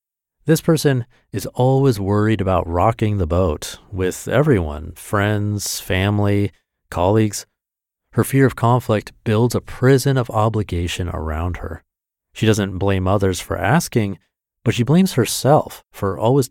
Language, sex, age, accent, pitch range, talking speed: English, male, 40-59, American, 95-125 Hz, 135 wpm